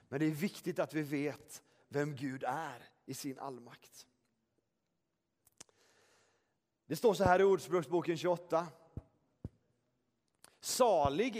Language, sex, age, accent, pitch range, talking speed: Swedish, male, 40-59, native, 140-205 Hz, 110 wpm